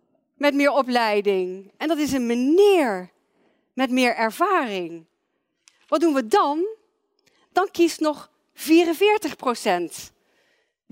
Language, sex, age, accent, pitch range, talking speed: Dutch, female, 40-59, Dutch, 200-315 Hz, 105 wpm